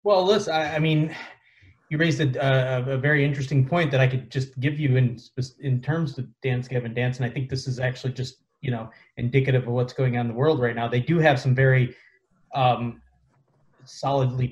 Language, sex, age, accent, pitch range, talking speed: English, male, 20-39, American, 125-145 Hz, 215 wpm